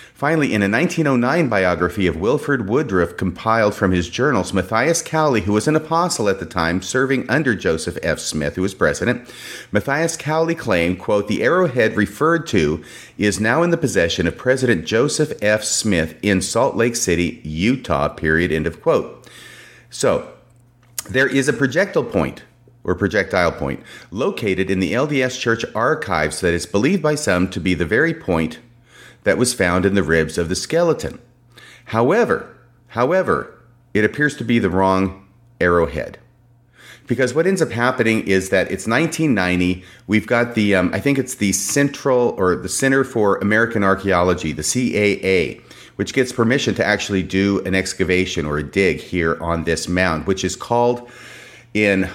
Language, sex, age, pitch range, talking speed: English, male, 40-59, 95-125 Hz, 165 wpm